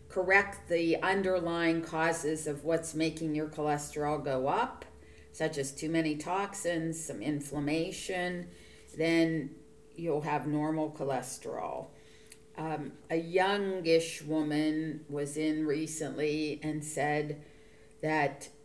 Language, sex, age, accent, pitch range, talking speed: English, female, 40-59, American, 150-170 Hz, 105 wpm